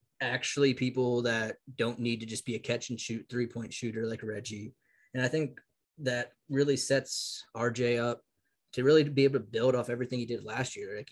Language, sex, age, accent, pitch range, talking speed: English, male, 20-39, American, 115-135 Hz, 205 wpm